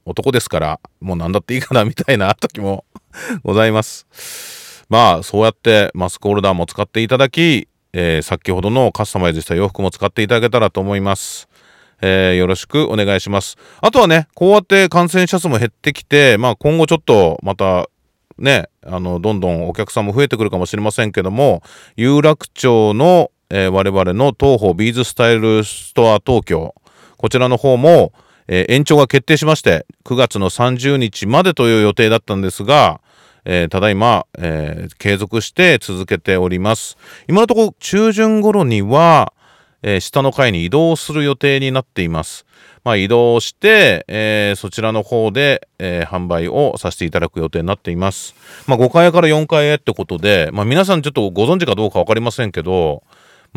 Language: Japanese